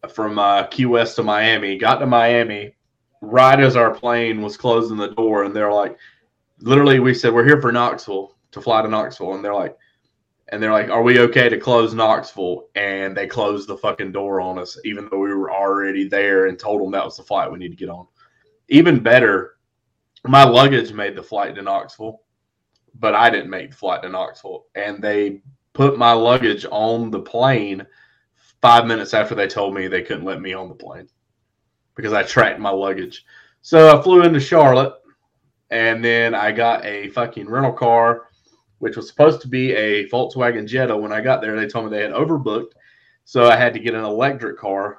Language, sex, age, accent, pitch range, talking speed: English, male, 20-39, American, 100-130 Hz, 200 wpm